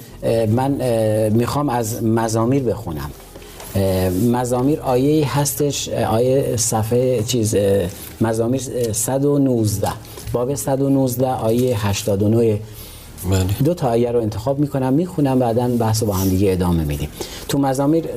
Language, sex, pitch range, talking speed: Persian, male, 110-135 Hz, 115 wpm